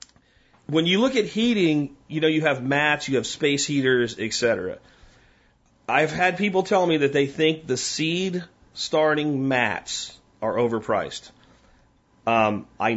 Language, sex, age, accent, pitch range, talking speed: English, male, 40-59, American, 130-210 Hz, 145 wpm